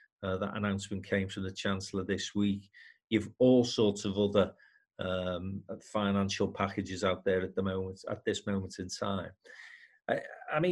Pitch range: 105-130 Hz